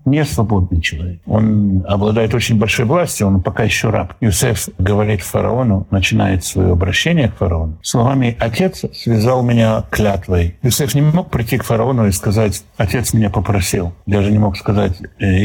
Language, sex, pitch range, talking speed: Russian, male, 100-130 Hz, 155 wpm